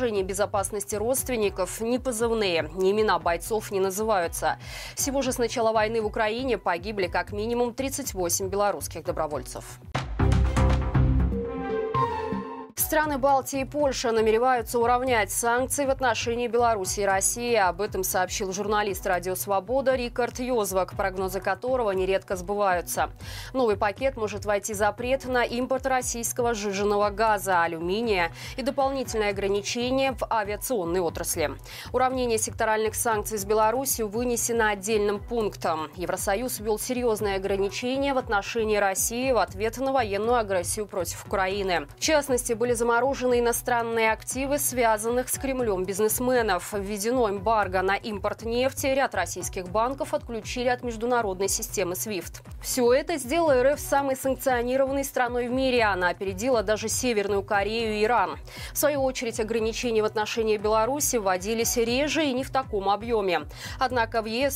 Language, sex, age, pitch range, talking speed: Russian, female, 20-39, 195-250 Hz, 130 wpm